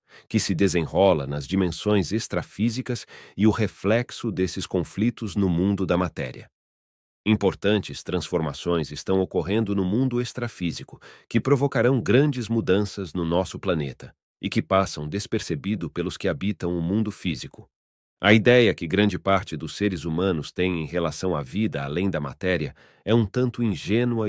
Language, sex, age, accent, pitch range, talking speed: English, male, 40-59, Brazilian, 85-110 Hz, 145 wpm